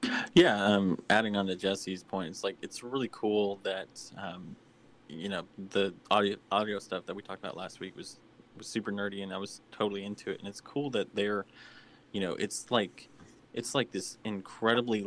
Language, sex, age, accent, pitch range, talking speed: English, male, 20-39, American, 100-105 Hz, 195 wpm